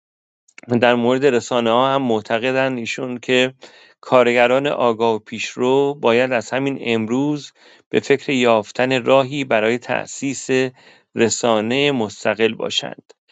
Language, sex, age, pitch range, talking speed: English, male, 40-59, 110-130 Hz, 115 wpm